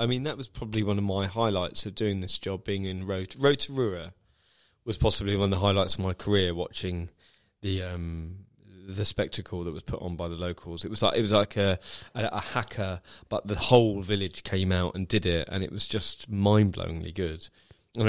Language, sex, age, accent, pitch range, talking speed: English, male, 20-39, British, 90-110 Hz, 210 wpm